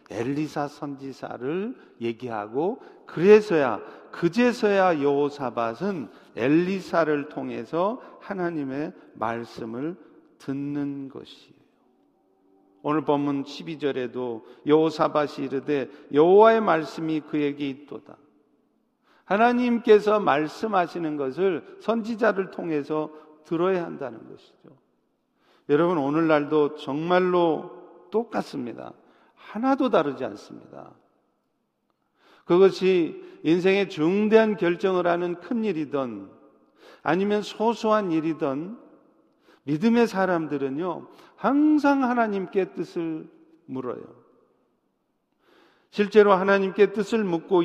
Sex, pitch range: male, 145-200 Hz